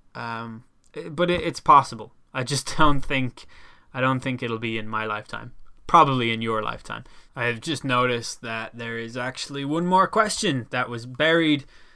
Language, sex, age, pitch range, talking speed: English, male, 10-29, 115-150 Hz, 170 wpm